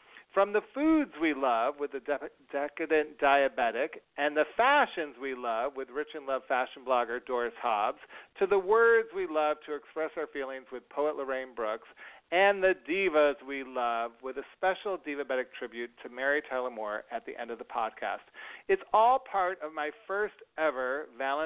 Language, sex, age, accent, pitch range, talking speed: English, male, 40-59, American, 135-190 Hz, 175 wpm